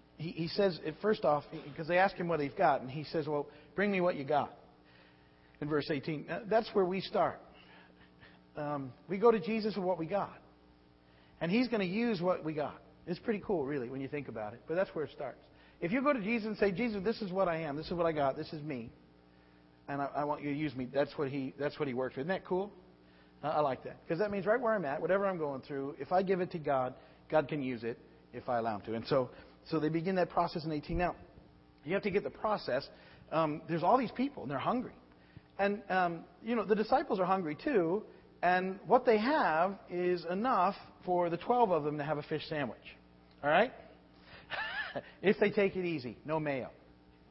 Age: 50-69